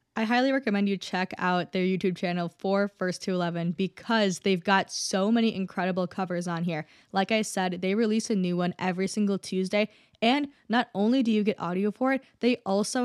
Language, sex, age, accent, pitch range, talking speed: English, female, 10-29, American, 175-205 Hz, 200 wpm